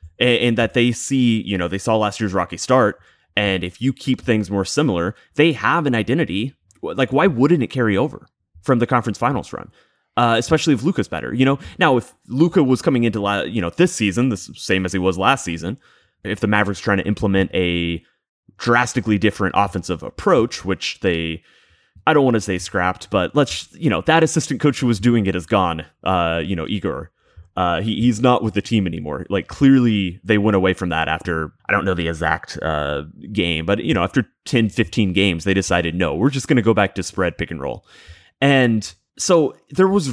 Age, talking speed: 30-49, 215 wpm